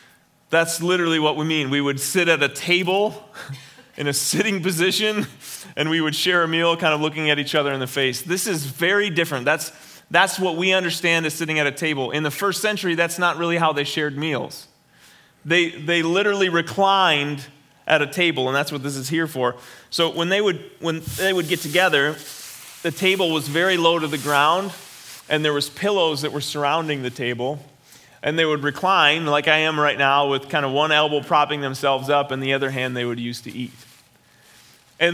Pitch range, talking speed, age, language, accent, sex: 140-170 Hz, 210 wpm, 30-49, English, American, male